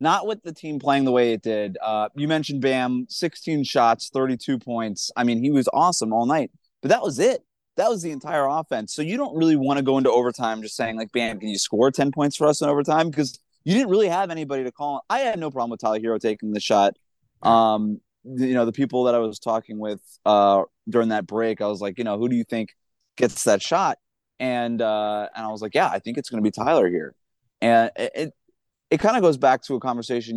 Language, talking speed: English, 245 wpm